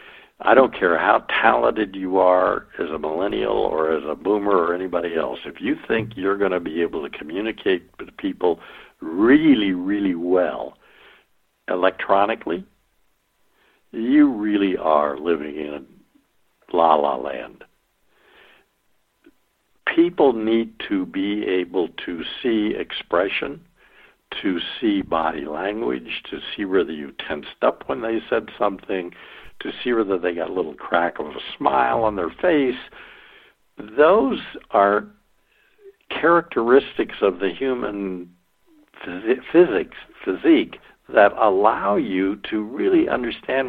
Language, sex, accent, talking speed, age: English, male, American, 120 wpm, 60-79